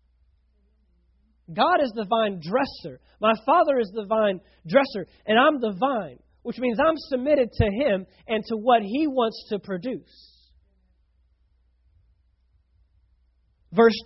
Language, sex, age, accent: English, male, 40-59, American